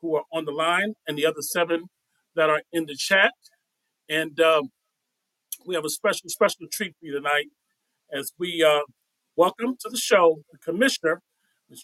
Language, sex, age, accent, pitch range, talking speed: English, male, 40-59, American, 170-230 Hz, 175 wpm